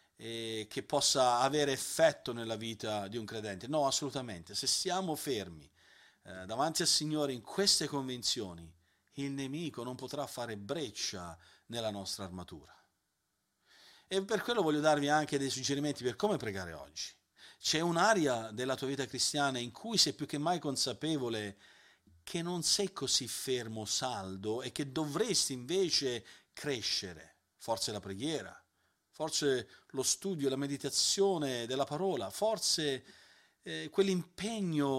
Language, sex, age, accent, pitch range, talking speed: Italian, male, 40-59, native, 115-155 Hz, 135 wpm